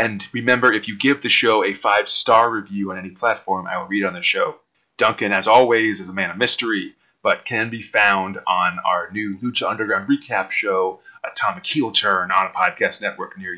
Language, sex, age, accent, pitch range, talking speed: English, male, 30-49, American, 105-135 Hz, 205 wpm